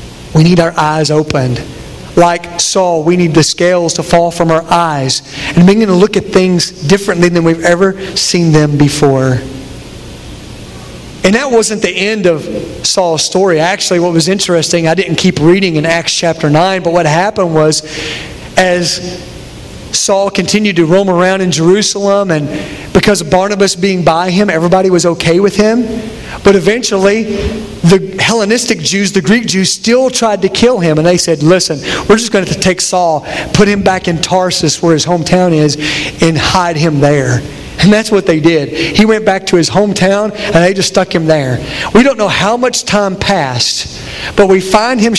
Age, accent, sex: 40-59, American, male